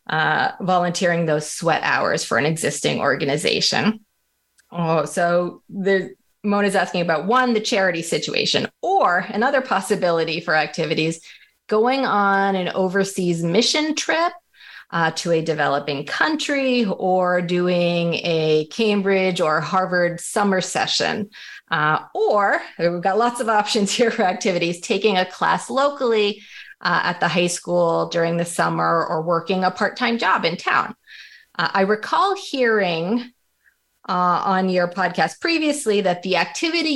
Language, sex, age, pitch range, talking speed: English, female, 30-49, 175-225 Hz, 135 wpm